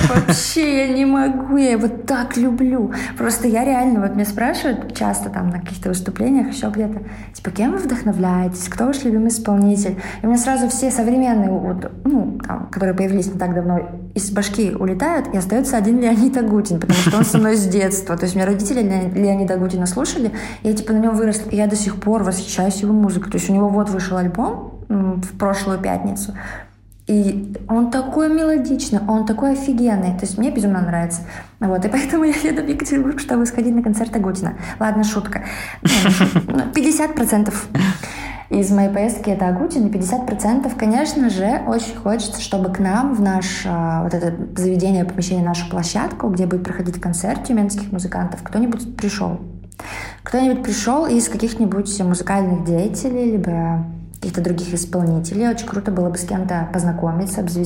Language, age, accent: Russian, 20-39, native